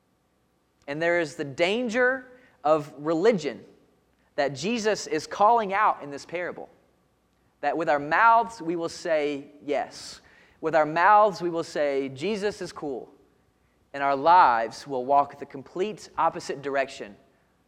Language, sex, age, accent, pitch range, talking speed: English, male, 30-49, American, 140-200 Hz, 140 wpm